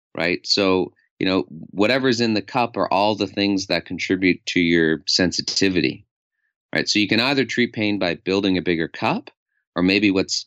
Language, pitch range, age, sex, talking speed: English, 90-110 Hz, 30-49, male, 185 wpm